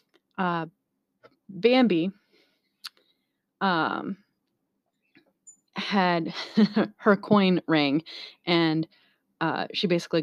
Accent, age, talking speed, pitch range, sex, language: American, 30-49, 65 wpm, 160-195 Hz, female, English